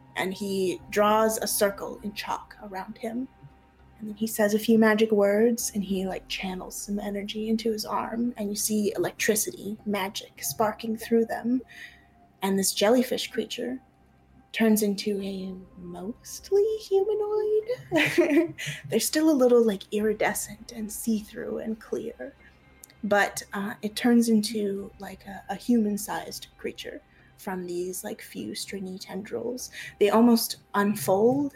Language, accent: English, American